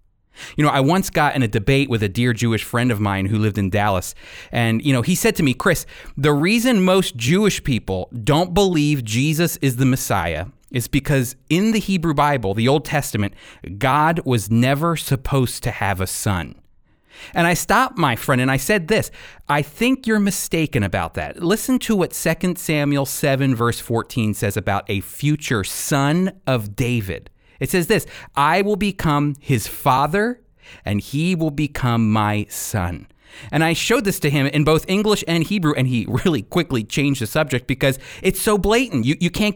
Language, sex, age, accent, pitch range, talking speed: English, male, 30-49, American, 120-185 Hz, 190 wpm